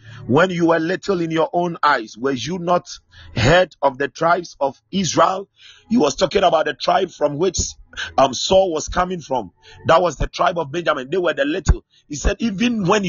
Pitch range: 130-210 Hz